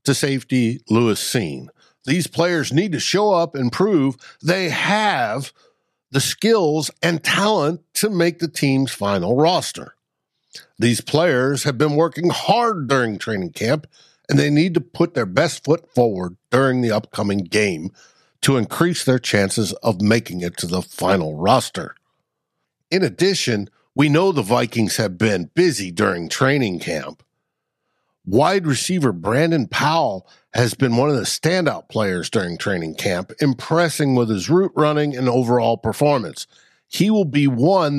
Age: 60-79